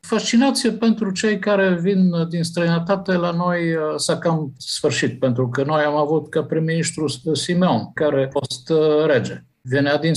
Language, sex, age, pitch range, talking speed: Romanian, male, 50-69, 130-170 Hz, 155 wpm